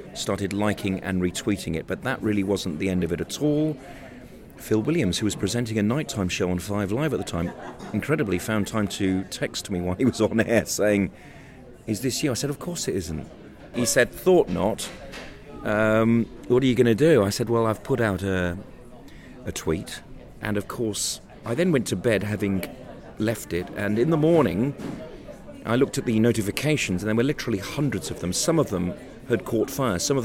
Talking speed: 210 wpm